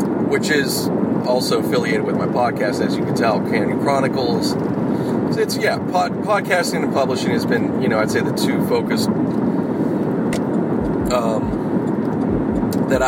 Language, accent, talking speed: English, American, 140 wpm